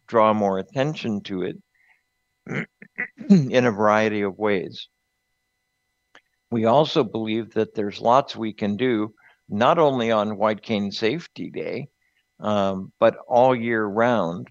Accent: American